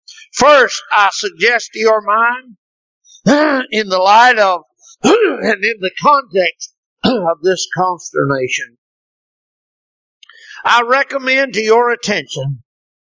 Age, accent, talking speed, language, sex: 60-79, American, 100 wpm, English, male